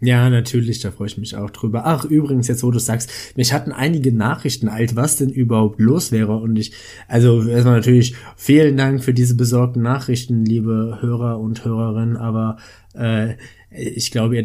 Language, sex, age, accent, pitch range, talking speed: German, male, 20-39, German, 110-130 Hz, 185 wpm